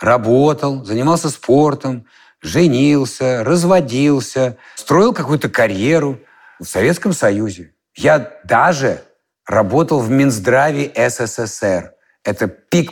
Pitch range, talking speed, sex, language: 120-175 Hz, 90 wpm, male, Russian